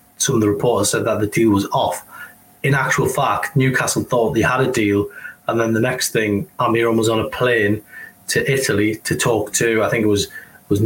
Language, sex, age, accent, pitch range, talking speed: English, male, 30-49, British, 110-125 Hz, 215 wpm